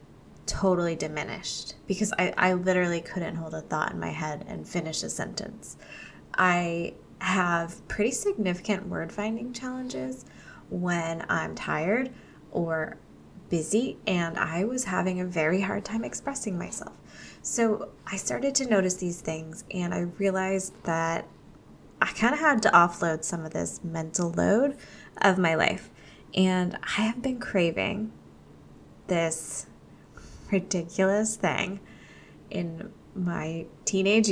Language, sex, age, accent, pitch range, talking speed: English, female, 20-39, American, 170-215 Hz, 130 wpm